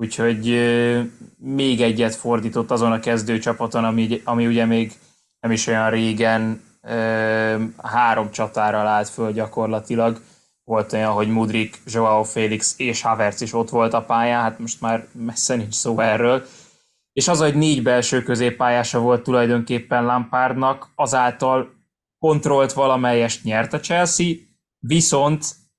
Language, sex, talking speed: Hungarian, male, 135 wpm